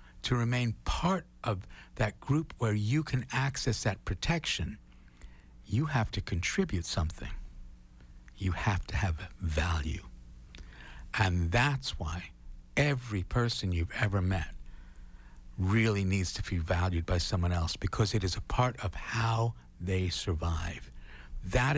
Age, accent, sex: 60-79, American, male